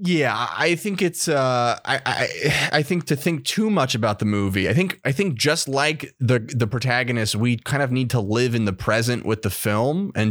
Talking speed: 220 wpm